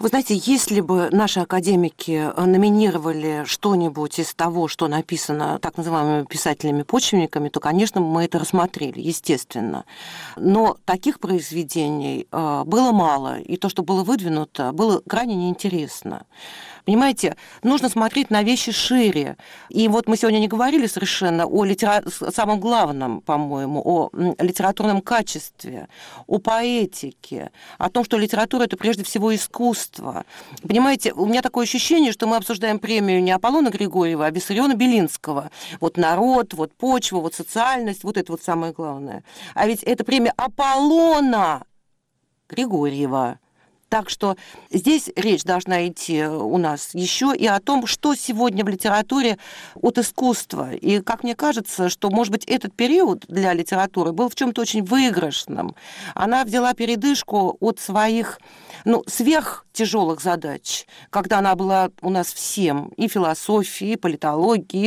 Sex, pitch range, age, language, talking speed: female, 175-230 Hz, 40-59, Russian, 140 wpm